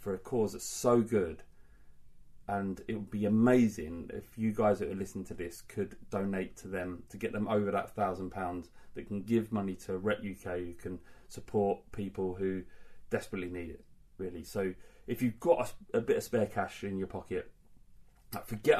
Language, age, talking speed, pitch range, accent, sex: English, 30-49, 190 wpm, 95-115 Hz, British, male